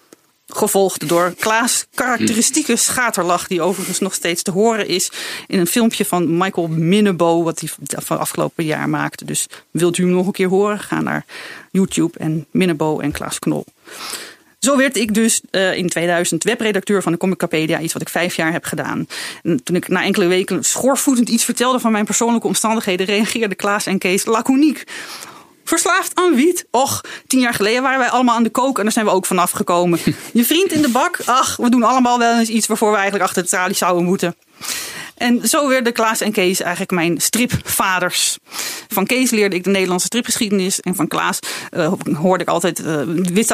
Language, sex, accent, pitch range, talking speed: Dutch, female, Dutch, 180-230 Hz, 190 wpm